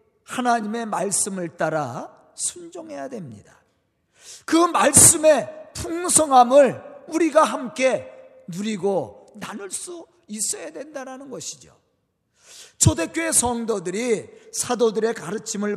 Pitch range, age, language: 220-315 Hz, 40-59, Korean